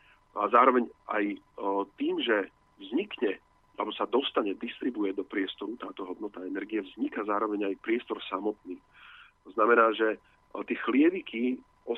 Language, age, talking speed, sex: Slovak, 40-59, 135 wpm, male